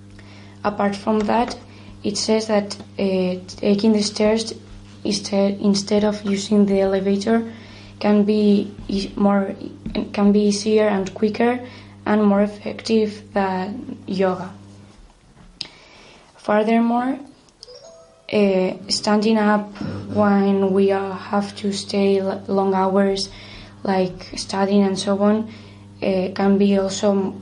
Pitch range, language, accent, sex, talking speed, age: 185-210 Hz, English, Spanish, female, 110 wpm, 20-39